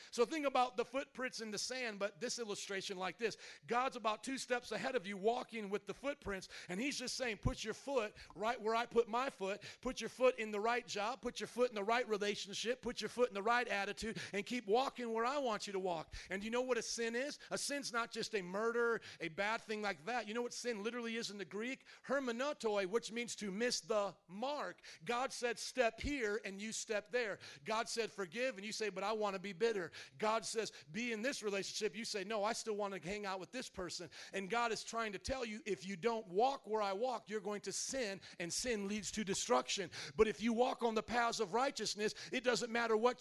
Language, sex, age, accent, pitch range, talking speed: English, male, 40-59, American, 205-245 Hz, 245 wpm